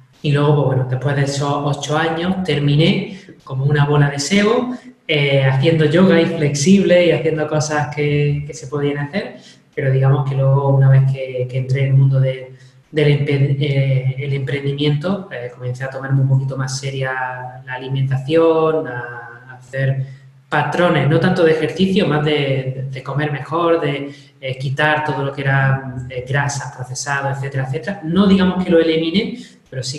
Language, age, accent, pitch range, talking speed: Spanish, 20-39, Spanish, 135-155 Hz, 175 wpm